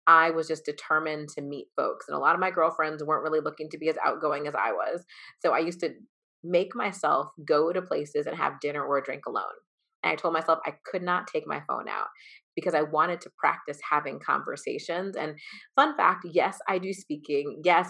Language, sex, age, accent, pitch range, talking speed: English, female, 30-49, American, 155-190 Hz, 220 wpm